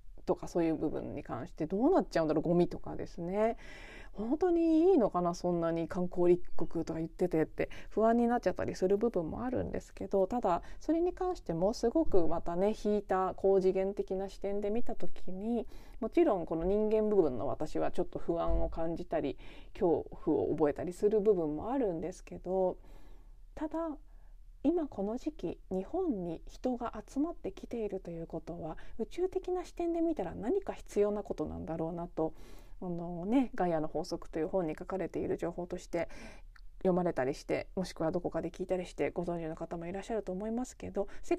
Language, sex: Japanese, female